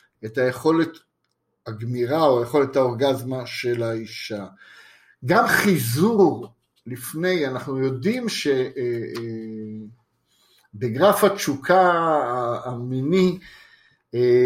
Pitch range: 130-180 Hz